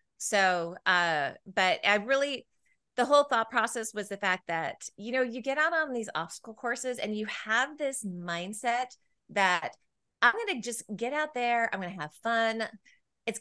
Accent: American